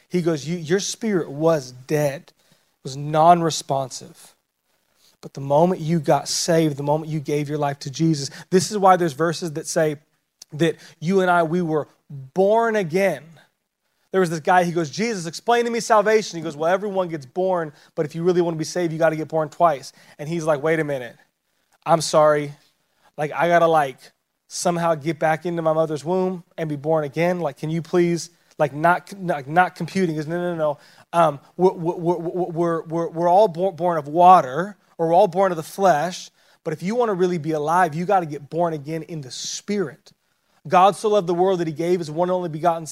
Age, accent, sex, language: 30-49, American, male, English